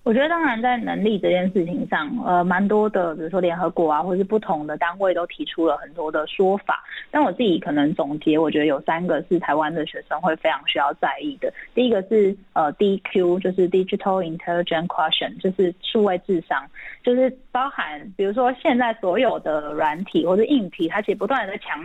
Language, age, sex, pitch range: Chinese, 20-39, female, 170-230 Hz